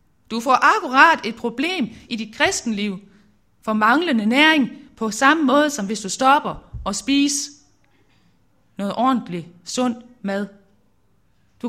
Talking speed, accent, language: 130 wpm, native, Danish